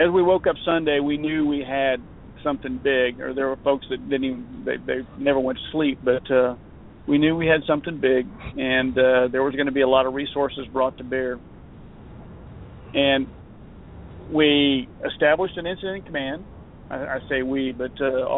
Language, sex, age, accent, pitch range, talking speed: English, male, 50-69, American, 130-145 Hz, 190 wpm